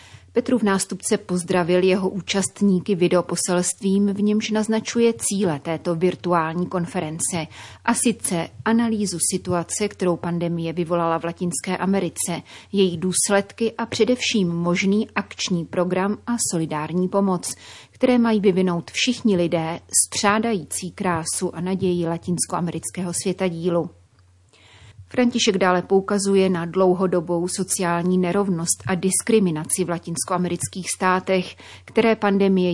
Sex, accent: female, native